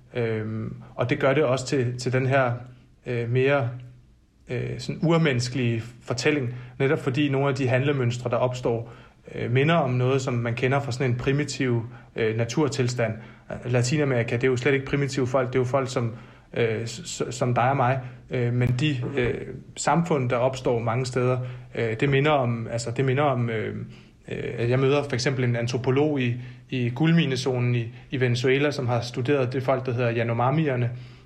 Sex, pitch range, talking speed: male, 120-140 Hz, 150 wpm